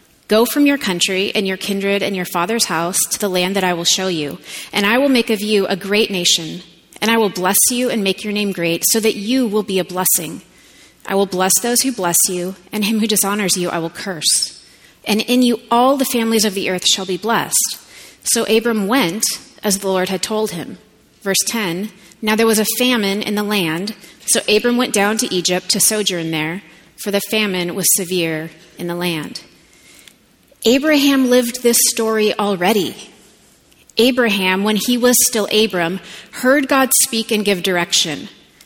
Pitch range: 185-230 Hz